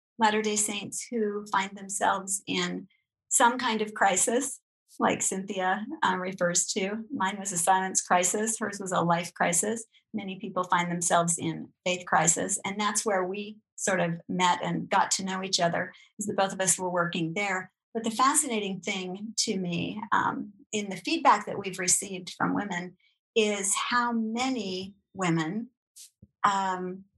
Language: English